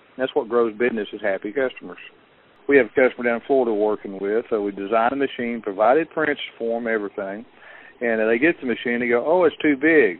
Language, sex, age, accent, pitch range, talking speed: English, male, 50-69, American, 105-125 Hz, 210 wpm